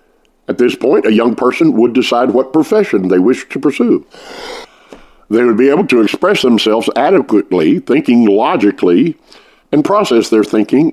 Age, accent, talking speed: 50-69, American, 155 wpm